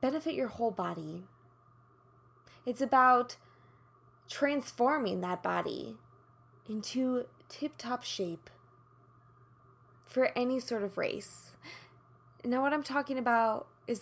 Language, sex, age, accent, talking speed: English, female, 20-39, American, 100 wpm